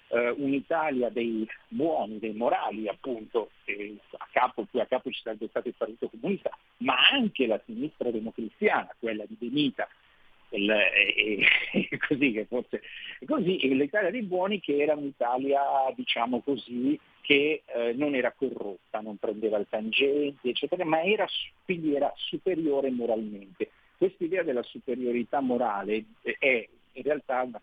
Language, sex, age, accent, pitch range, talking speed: Italian, male, 50-69, native, 115-180 Hz, 160 wpm